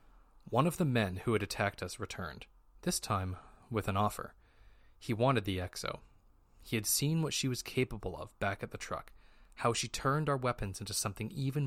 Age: 20-39